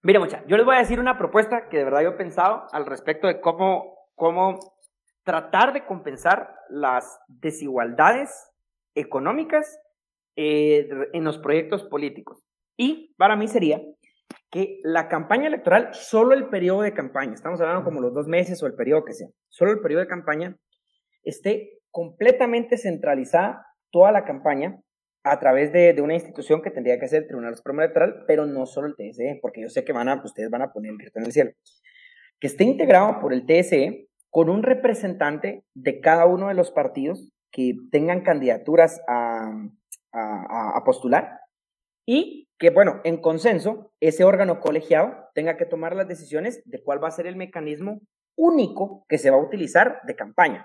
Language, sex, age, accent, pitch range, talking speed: Spanish, male, 40-59, Mexican, 155-245 Hz, 180 wpm